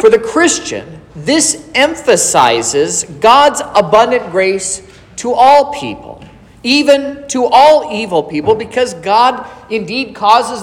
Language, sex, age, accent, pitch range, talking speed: English, male, 40-59, American, 170-255 Hz, 115 wpm